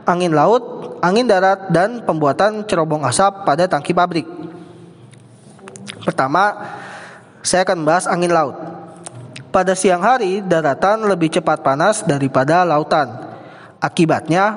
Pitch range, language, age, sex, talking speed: 155-195 Hz, Indonesian, 20-39, male, 110 wpm